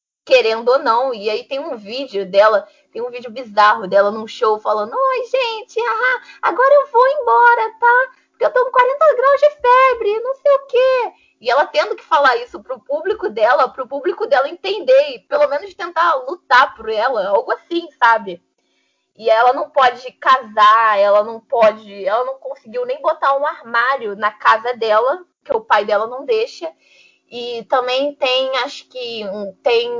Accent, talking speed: Brazilian, 180 wpm